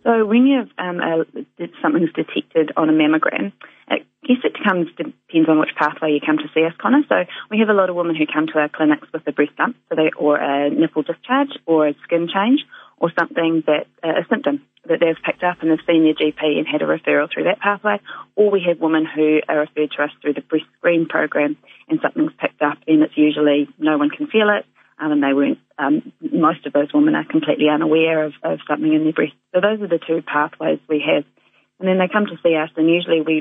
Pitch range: 155-185 Hz